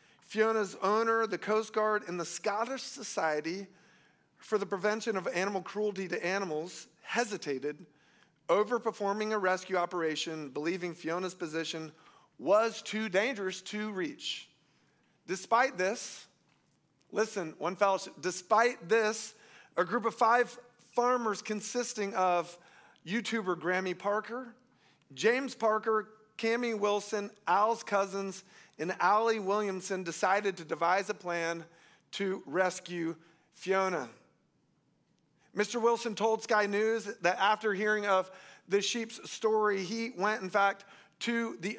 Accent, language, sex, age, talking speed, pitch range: American, English, male, 40-59, 120 wpm, 185-220 Hz